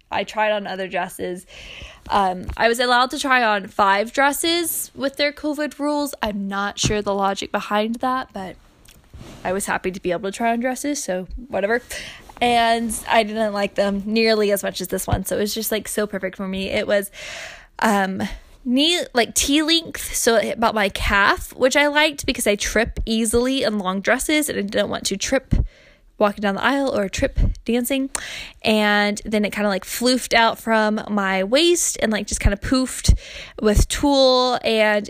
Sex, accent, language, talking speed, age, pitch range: female, American, English, 195 wpm, 10-29, 200-255 Hz